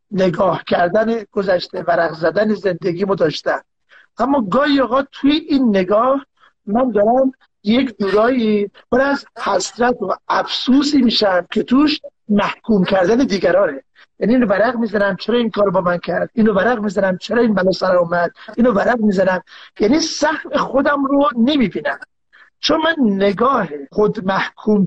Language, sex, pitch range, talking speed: Persian, male, 200-265 Hz, 140 wpm